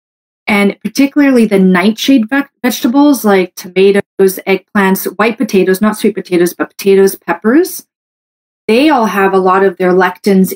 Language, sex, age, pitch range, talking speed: English, female, 30-49, 190-245 Hz, 135 wpm